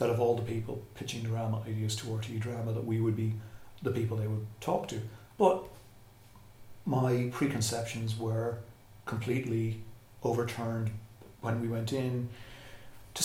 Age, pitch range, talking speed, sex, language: 40-59, 110-125 Hz, 145 wpm, male, English